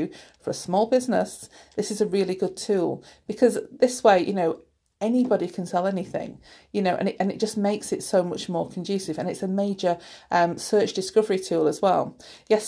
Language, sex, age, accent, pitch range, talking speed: English, female, 40-59, British, 175-210 Hz, 205 wpm